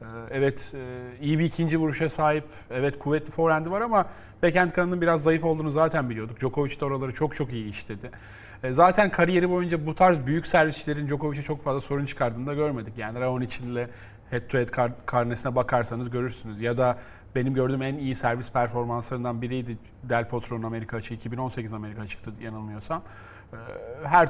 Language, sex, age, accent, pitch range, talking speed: Turkish, male, 40-59, native, 120-155 Hz, 165 wpm